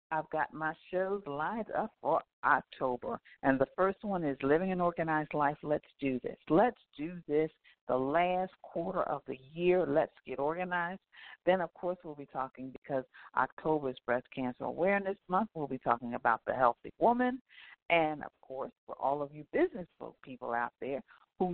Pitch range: 130-190 Hz